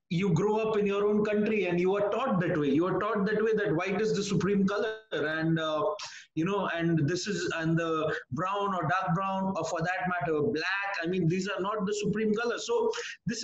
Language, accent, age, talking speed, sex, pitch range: English, Indian, 30-49, 230 wpm, male, 195-225 Hz